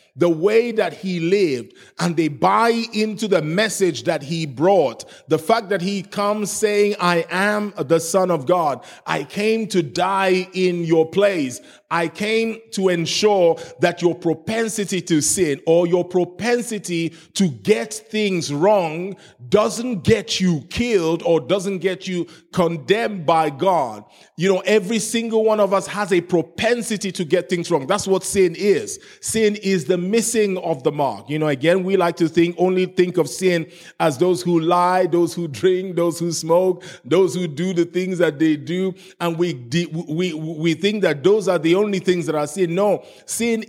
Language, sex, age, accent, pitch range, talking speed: English, male, 30-49, Nigerian, 170-205 Hz, 180 wpm